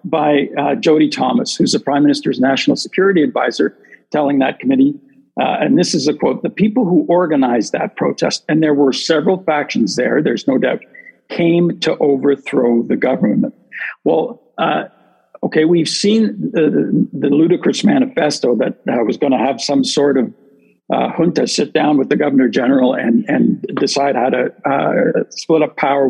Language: English